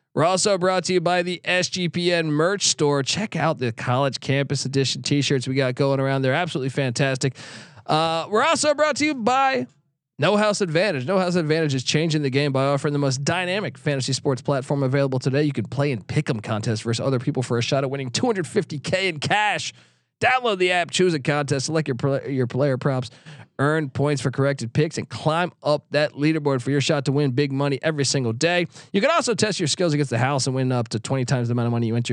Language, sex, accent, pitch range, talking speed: English, male, American, 135-175 Hz, 230 wpm